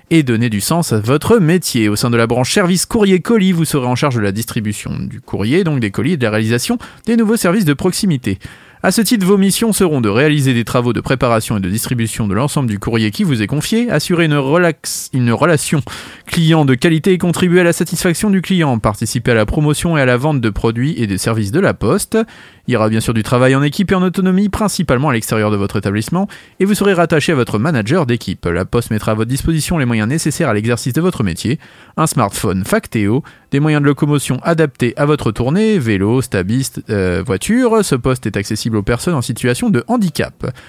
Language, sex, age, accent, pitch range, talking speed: French, male, 30-49, French, 115-175 Hz, 225 wpm